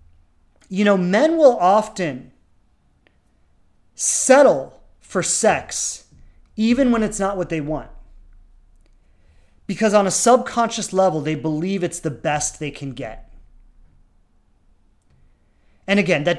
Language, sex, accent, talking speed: English, male, American, 115 wpm